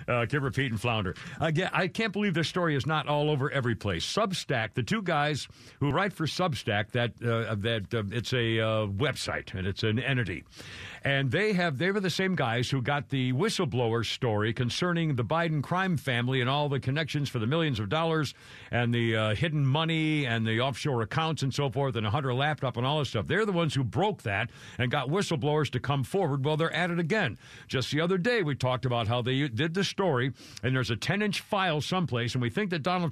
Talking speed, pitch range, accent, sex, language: 230 wpm, 125-175 Hz, American, male, English